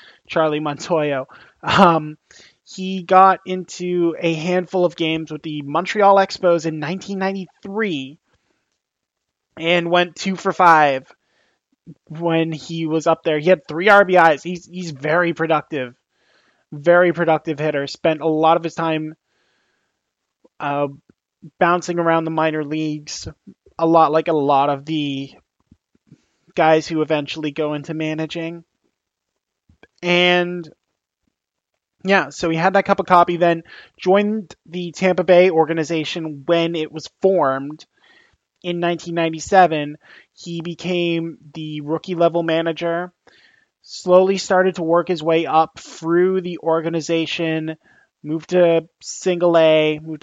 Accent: American